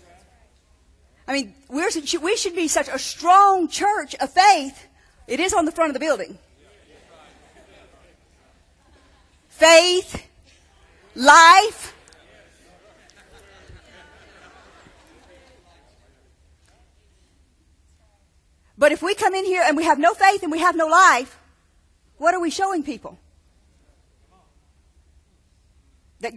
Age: 40-59